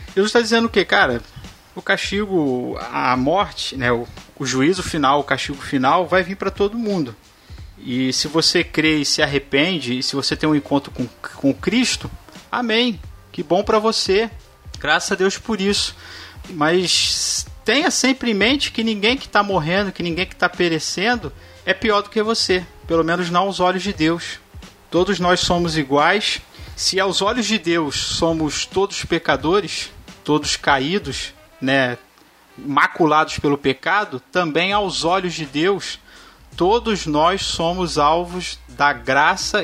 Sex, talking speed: male, 155 wpm